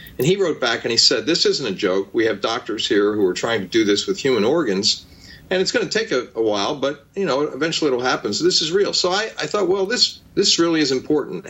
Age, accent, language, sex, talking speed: 50-69, American, English, male, 270 wpm